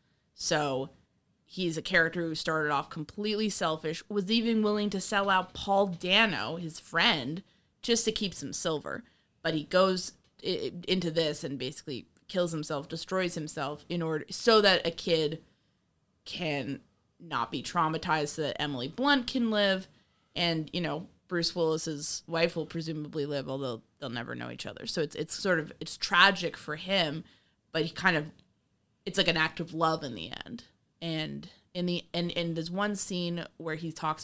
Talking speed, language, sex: 175 wpm, English, female